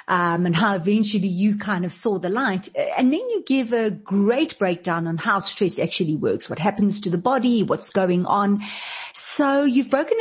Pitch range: 195-255 Hz